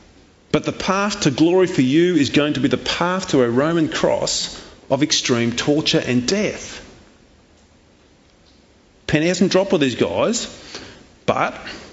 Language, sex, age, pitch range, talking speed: English, male, 40-59, 130-175 Hz, 145 wpm